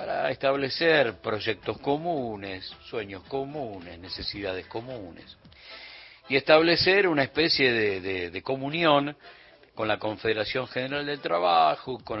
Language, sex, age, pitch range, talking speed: Spanish, male, 50-69, 105-145 Hz, 115 wpm